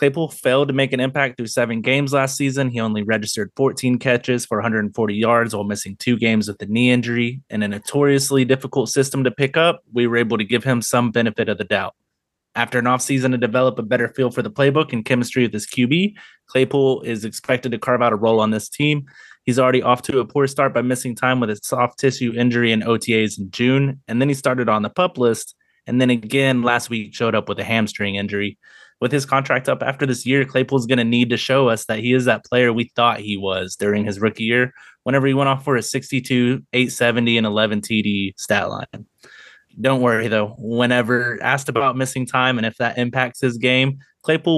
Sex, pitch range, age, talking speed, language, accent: male, 115-130 Hz, 20-39, 225 wpm, English, American